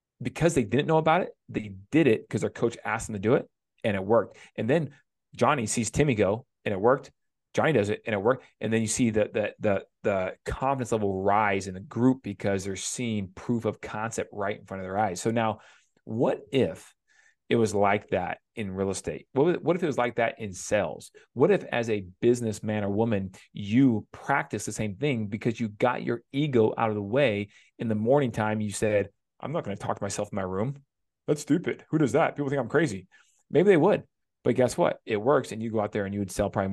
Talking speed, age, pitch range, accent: 235 wpm, 30-49, 100-120 Hz, American